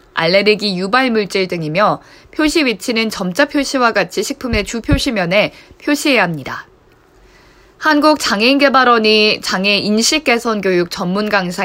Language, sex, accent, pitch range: Korean, female, native, 190-260 Hz